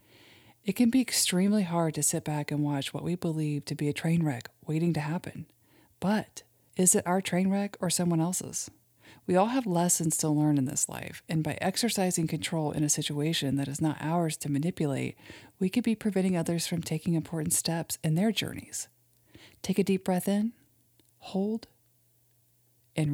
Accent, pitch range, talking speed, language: American, 135-180 Hz, 185 wpm, English